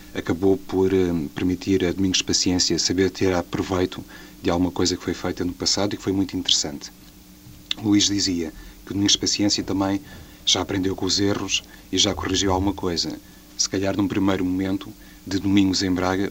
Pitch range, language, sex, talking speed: 90-100 Hz, Portuguese, male, 175 wpm